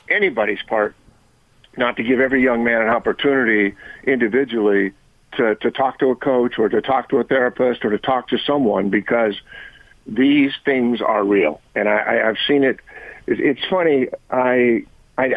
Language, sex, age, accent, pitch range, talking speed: English, male, 50-69, American, 115-135 Hz, 160 wpm